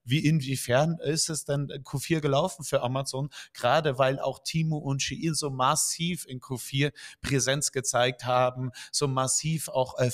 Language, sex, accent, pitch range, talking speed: German, male, German, 115-135 Hz, 155 wpm